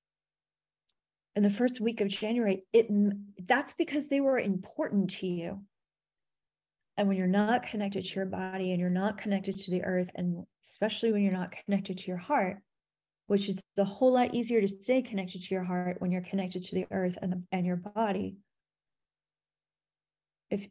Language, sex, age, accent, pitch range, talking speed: English, female, 30-49, American, 185-225 Hz, 180 wpm